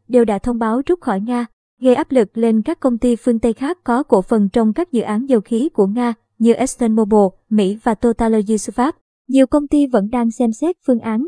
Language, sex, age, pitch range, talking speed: Vietnamese, male, 20-39, 215-260 Hz, 225 wpm